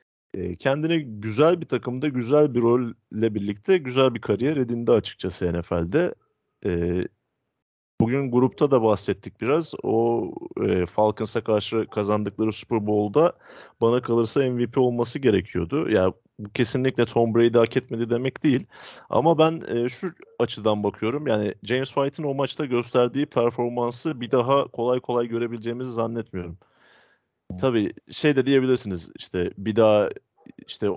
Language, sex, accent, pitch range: Turkish, male, native, 105-125 Hz